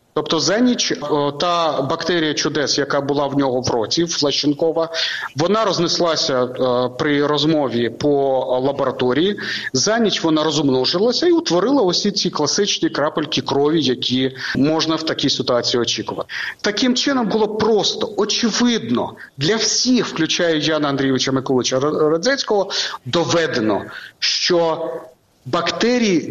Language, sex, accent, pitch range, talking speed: Ukrainian, male, native, 140-200 Hz, 115 wpm